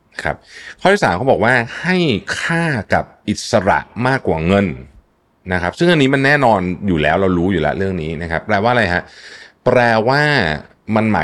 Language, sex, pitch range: Thai, male, 80-115 Hz